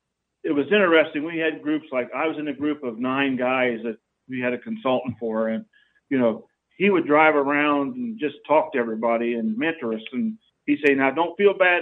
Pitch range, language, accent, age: 130-155 Hz, English, American, 50-69